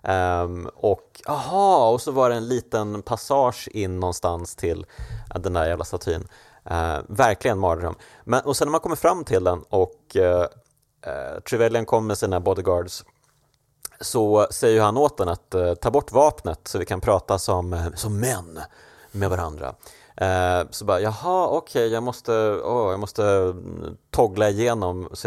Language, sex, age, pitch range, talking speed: Swedish, male, 30-49, 90-130 Hz, 170 wpm